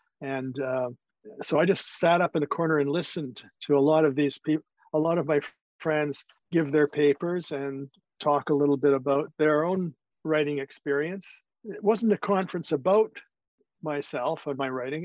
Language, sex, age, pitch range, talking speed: English, male, 50-69, 140-165 Hz, 185 wpm